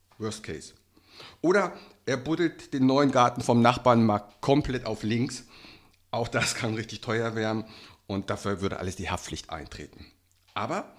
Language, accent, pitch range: German, German, 110-150 Hz